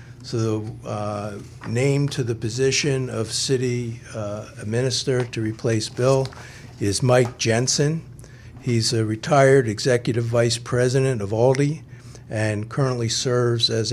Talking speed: 120 wpm